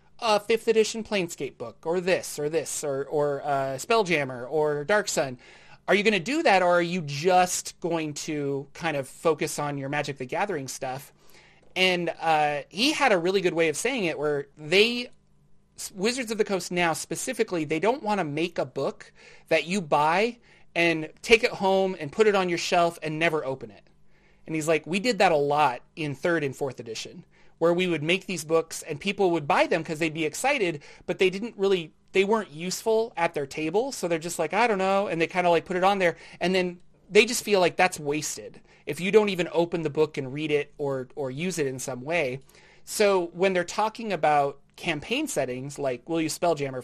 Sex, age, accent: male, 30-49, American